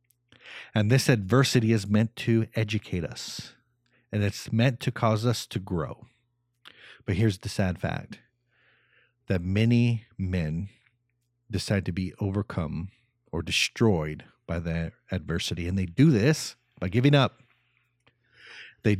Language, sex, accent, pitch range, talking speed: English, male, American, 100-125 Hz, 130 wpm